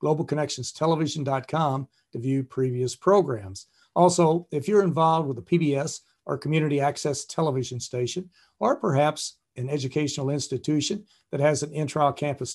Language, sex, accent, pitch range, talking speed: English, male, American, 130-170 Hz, 125 wpm